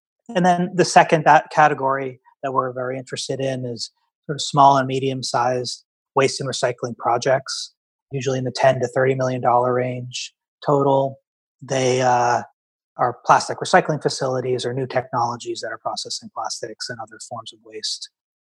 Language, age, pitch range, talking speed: English, 30-49, 125-150 Hz, 155 wpm